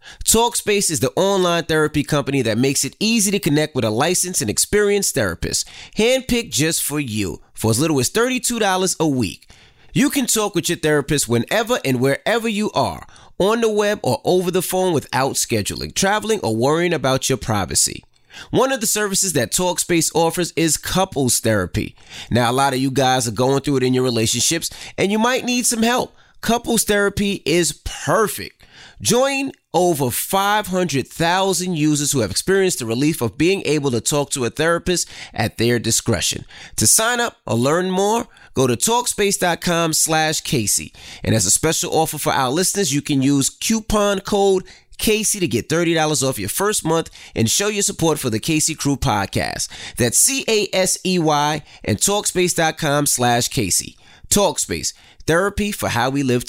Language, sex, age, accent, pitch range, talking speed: English, male, 30-49, American, 130-200 Hz, 170 wpm